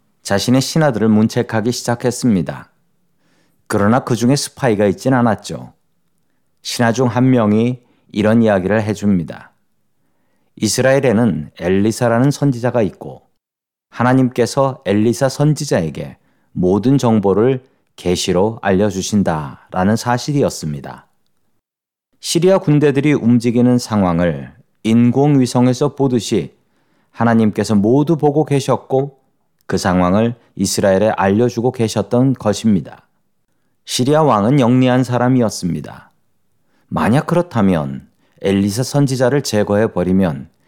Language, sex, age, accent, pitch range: Korean, male, 40-59, native, 100-130 Hz